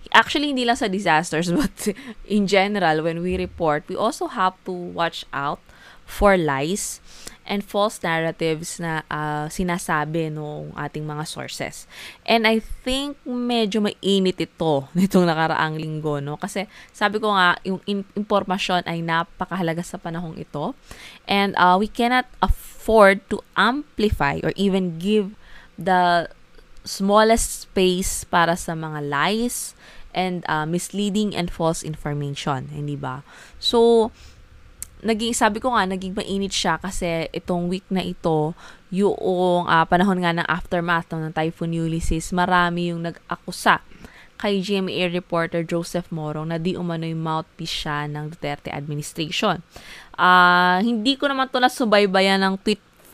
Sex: female